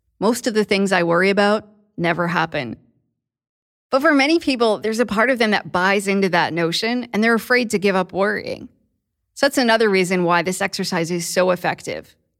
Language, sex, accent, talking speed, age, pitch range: English, female, American, 195 wpm, 20-39, 170-220 Hz